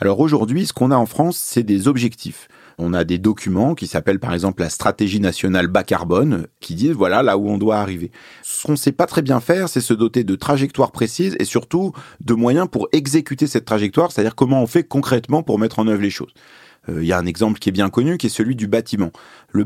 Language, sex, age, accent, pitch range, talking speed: French, male, 30-49, French, 95-135 Hz, 240 wpm